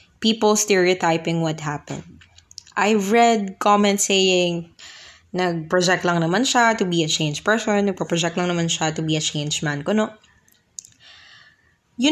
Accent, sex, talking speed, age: native, female, 140 wpm, 20-39